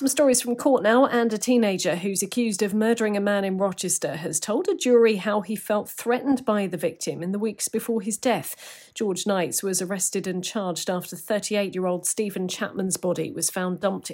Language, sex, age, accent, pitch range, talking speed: English, female, 40-59, British, 185-225 Hz, 200 wpm